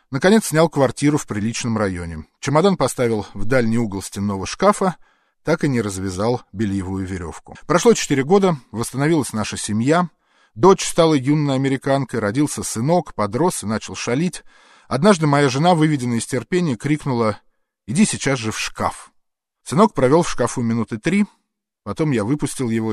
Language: Russian